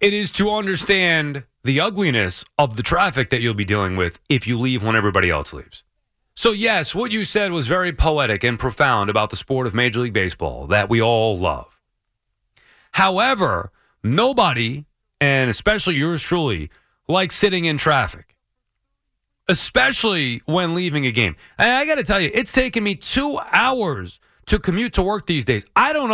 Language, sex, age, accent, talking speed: English, male, 30-49, American, 175 wpm